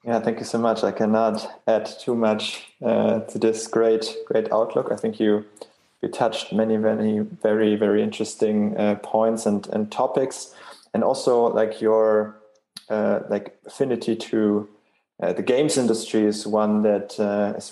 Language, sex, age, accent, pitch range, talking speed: English, male, 20-39, German, 105-115 Hz, 165 wpm